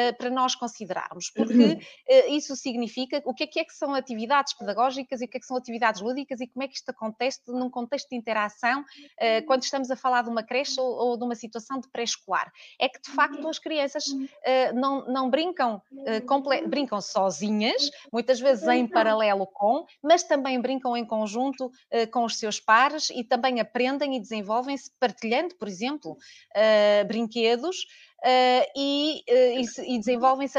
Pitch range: 220-275 Hz